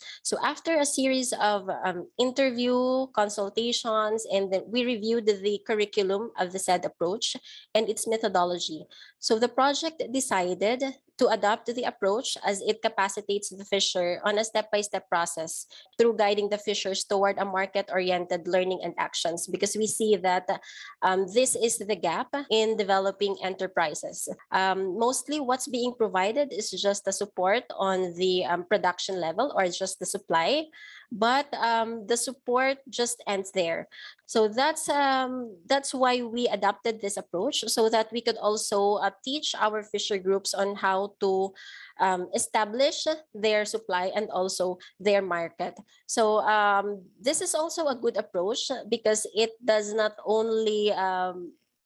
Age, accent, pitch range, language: 20-39, Filipino, 195-240 Hz, English